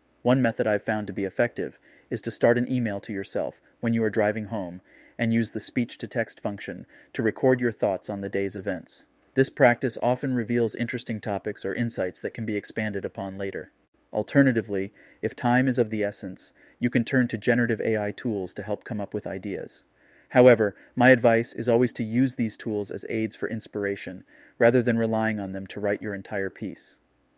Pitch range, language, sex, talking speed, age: 105-120 Hz, English, male, 195 wpm, 30-49